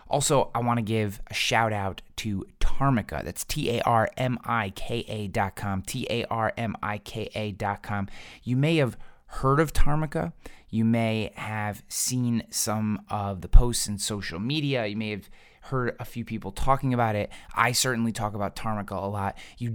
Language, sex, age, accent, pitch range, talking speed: English, male, 20-39, American, 100-120 Hz, 160 wpm